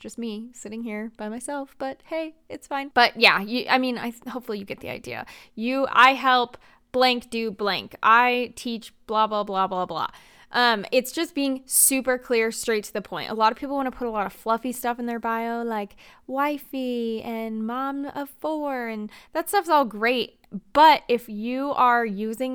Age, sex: 20-39, female